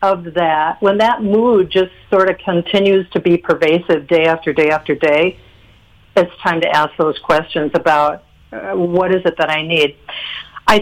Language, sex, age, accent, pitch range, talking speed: English, female, 60-79, American, 165-210 Hz, 170 wpm